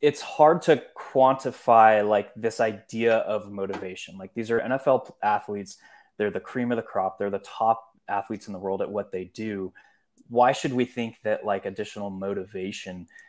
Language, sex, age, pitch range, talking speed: English, male, 20-39, 105-125 Hz, 175 wpm